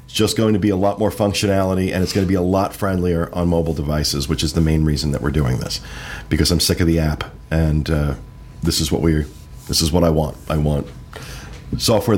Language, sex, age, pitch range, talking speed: English, male, 40-59, 80-100 Hz, 240 wpm